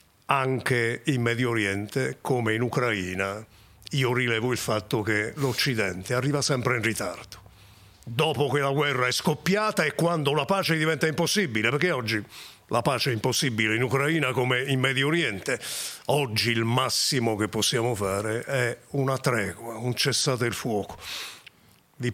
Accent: native